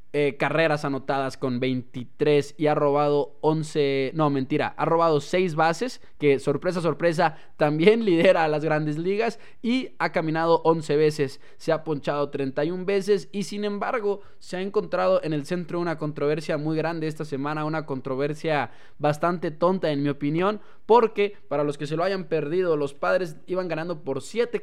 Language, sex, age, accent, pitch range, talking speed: Spanish, male, 20-39, Mexican, 145-185 Hz, 170 wpm